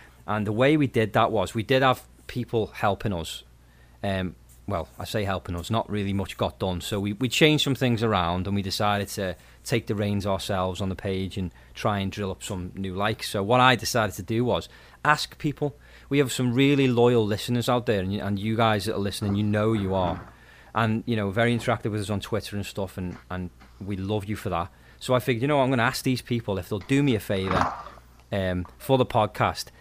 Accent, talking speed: British, 240 wpm